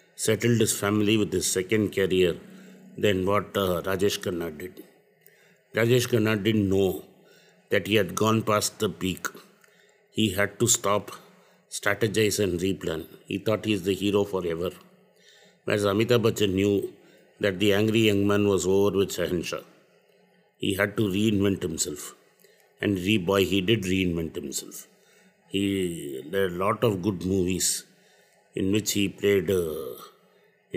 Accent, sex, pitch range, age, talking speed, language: native, male, 100-115 Hz, 50-69, 145 wpm, Tamil